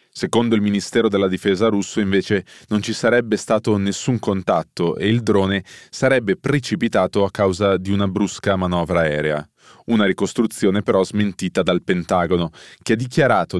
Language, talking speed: Italian, 150 wpm